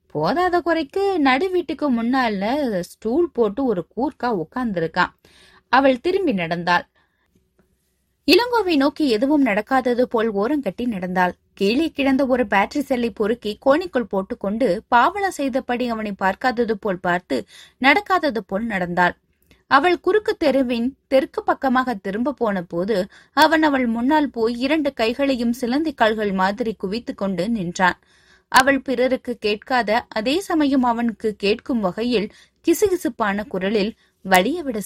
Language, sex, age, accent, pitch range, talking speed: Tamil, female, 20-39, native, 205-290 Hz, 75 wpm